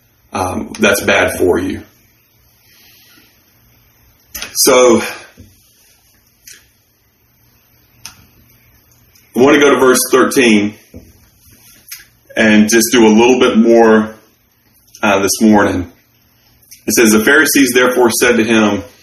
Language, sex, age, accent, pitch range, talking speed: English, male, 30-49, American, 105-120 Hz, 100 wpm